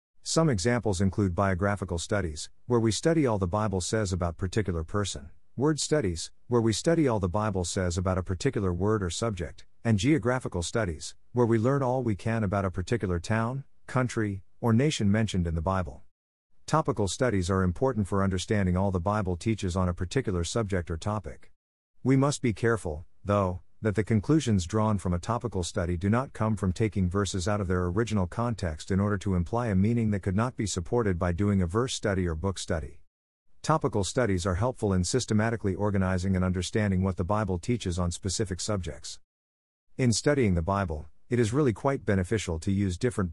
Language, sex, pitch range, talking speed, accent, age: English, male, 90-115 Hz, 190 wpm, American, 50-69